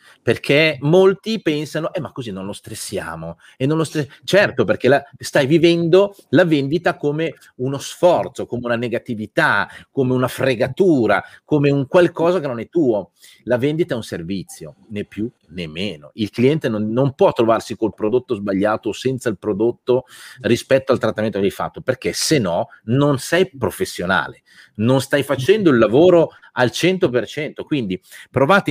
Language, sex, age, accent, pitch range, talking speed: Italian, male, 40-59, native, 115-155 Hz, 155 wpm